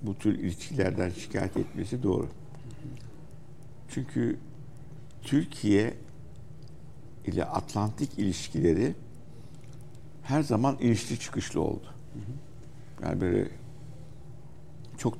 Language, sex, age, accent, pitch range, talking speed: Turkish, male, 60-79, native, 105-140 Hz, 75 wpm